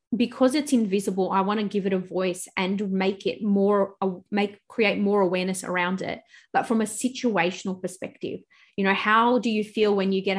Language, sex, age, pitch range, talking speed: English, female, 20-39, 185-205 Hz, 195 wpm